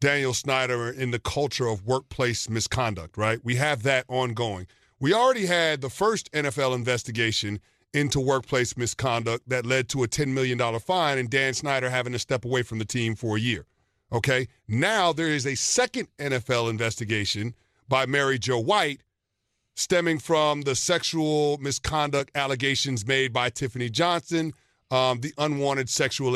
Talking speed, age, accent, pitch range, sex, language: 155 wpm, 40-59, American, 120-165 Hz, male, English